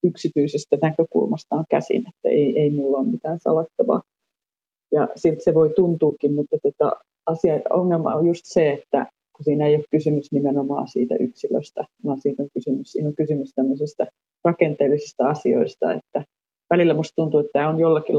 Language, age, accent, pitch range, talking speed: Finnish, 30-49, native, 135-170 Hz, 160 wpm